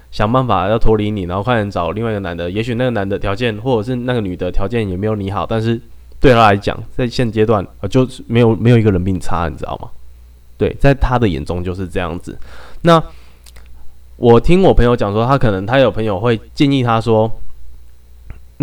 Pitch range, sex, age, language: 95-120 Hz, male, 20-39, Chinese